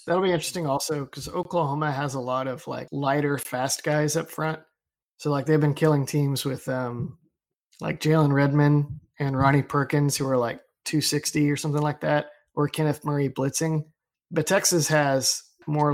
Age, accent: 20-39, American